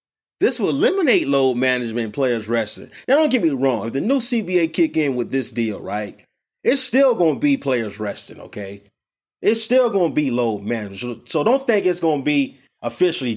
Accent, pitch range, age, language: American, 120-160 Hz, 30-49, English